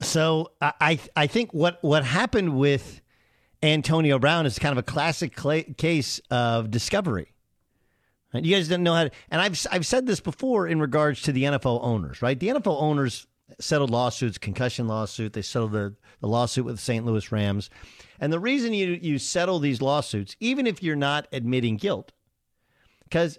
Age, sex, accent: 50-69, male, American